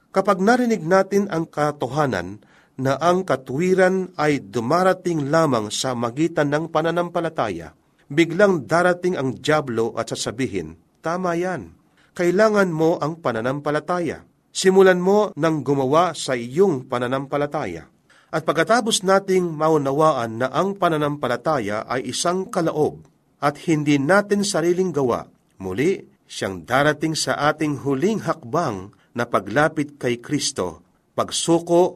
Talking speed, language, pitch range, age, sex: 115 wpm, Filipino, 130-175 Hz, 40-59, male